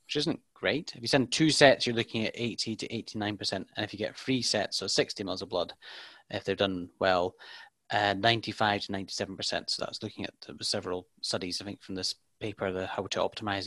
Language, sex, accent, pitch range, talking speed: English, male, British, 100-125 Hz, 230 wpm